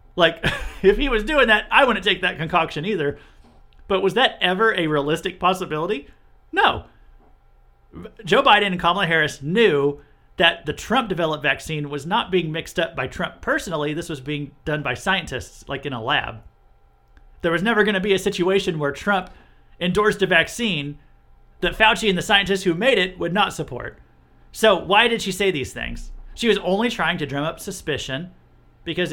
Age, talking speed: 40-59, 180 wpm